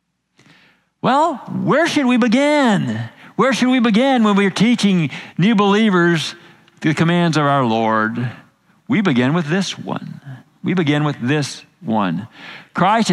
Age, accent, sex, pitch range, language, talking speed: 50-69, American, male, 155-220 Hz, English, 135 wpm